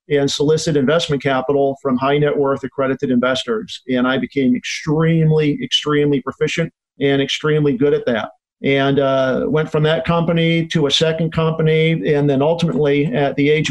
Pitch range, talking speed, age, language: 140-160 Hz, 160 wpm, 40-59, English